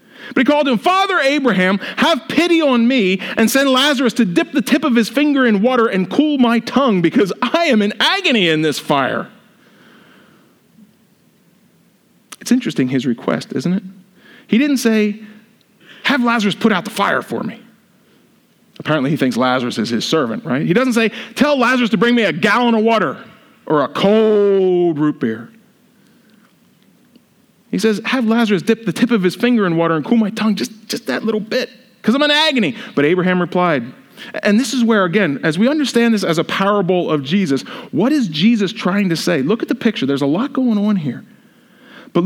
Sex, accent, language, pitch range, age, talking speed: male, American, English, 175-245 Hz, 40-59, 190 wpm